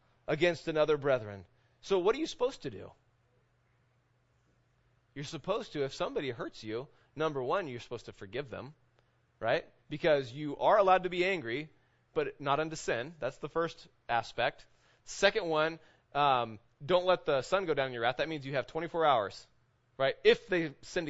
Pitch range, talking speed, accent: 125-170 Hz, 175 wpm, American